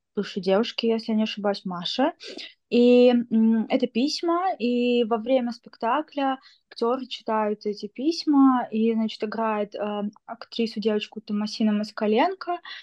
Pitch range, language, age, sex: 215-245 Hz, Russian, 20-39, female